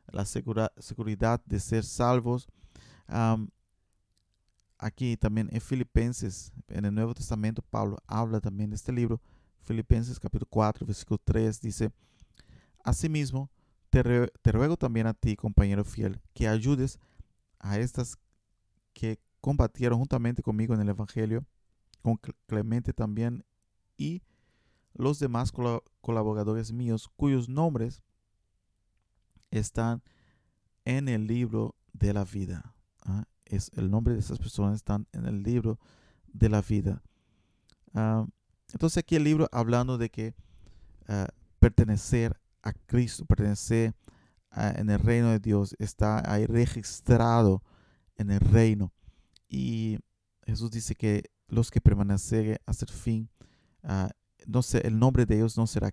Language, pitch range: Spanish, 100-115 Hz